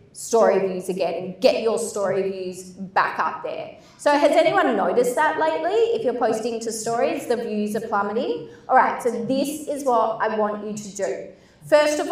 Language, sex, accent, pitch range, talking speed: English, female, Australian, 210-260 Hz, 190 wpm